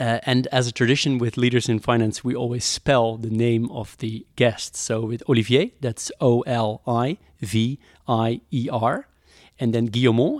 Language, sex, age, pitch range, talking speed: Dutch, male, 30-49, 115-140 Hz, 145 wpm